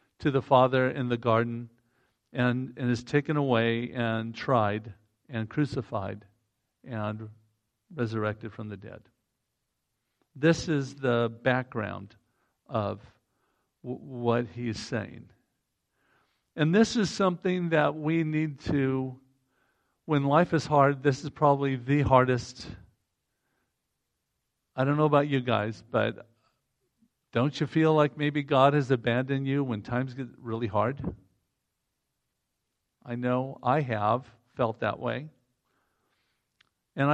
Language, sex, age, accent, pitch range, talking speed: English, male, 50-69, American, 115-140 Hz, 120 wpm